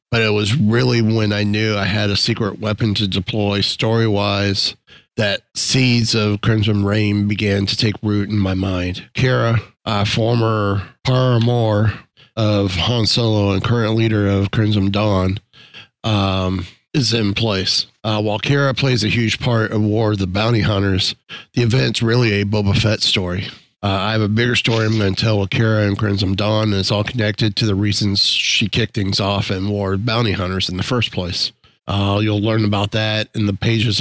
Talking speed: 185 wpm